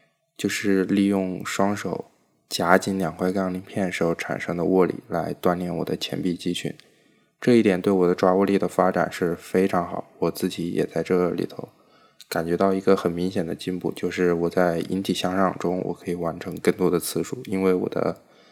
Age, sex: 20-39, male